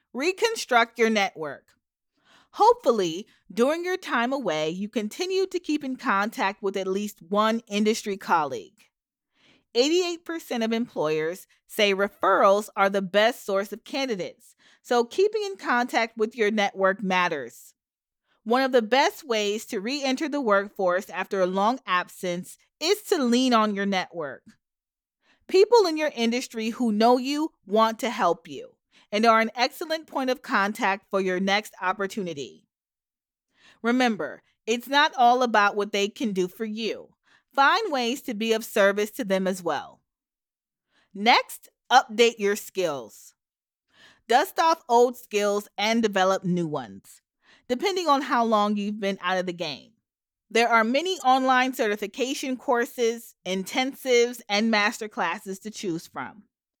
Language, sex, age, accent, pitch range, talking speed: English, female, 40-59, American, 200-260 Hz, 145 wpm